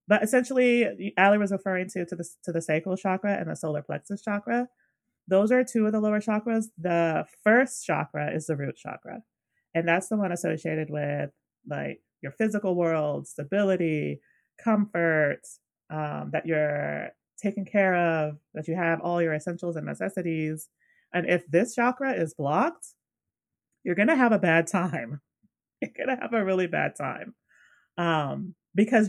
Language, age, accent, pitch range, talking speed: English, 30-49, American, 155-205 Hz, 165 wpm